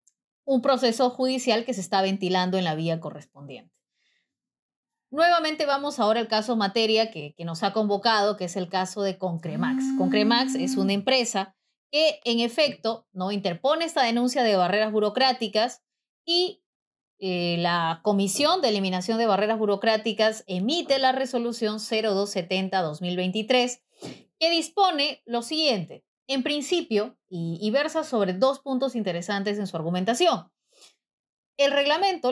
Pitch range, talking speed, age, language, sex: 190-260 Hz, 135 wpm, 30-49, Spanish, female